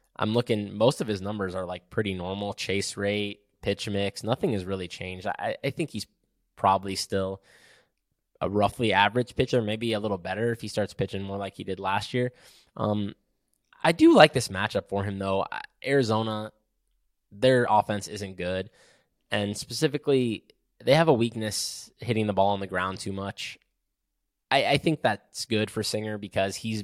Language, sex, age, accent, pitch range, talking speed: English, male, 10-29, American, 95-110 Hz, 175 wpm